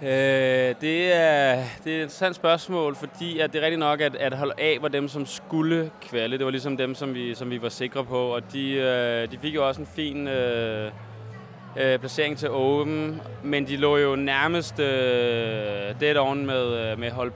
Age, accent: 20-39, native